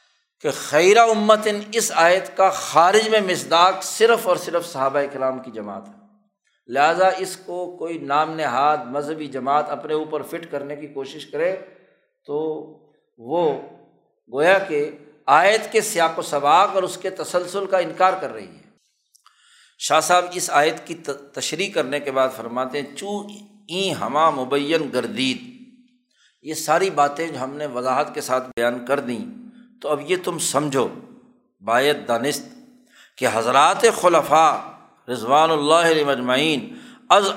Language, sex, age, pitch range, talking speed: Urdu, male, 60-79, 150-215 Hz, 150 wpm